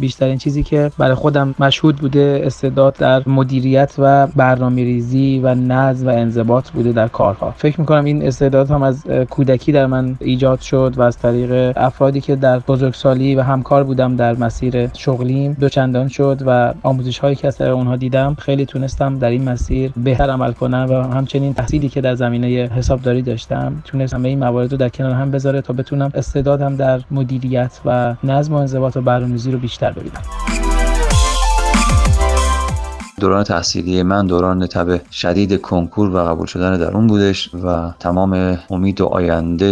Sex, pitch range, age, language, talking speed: male, 90-135 Hz, 30-49, Persian, 170 wpm